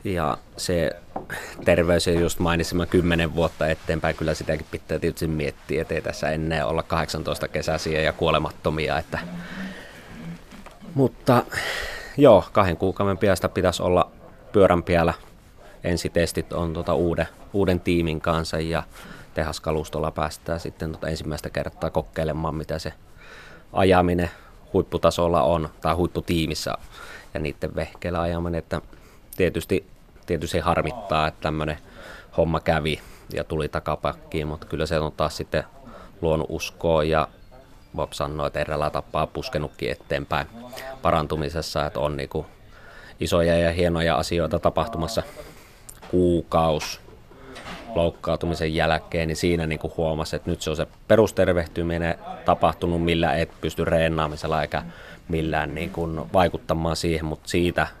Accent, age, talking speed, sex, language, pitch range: native, 20-39, 125 wpm, male, Finnish, 80-85 Hz